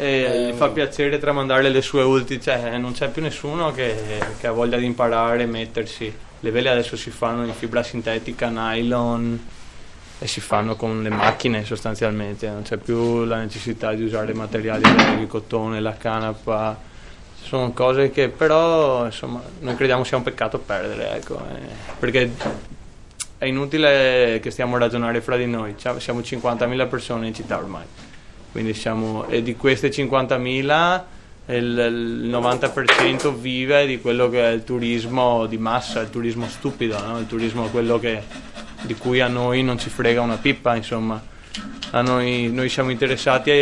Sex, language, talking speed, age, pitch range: male, Italian, 165 wpm, 20-39, 115-125 Hz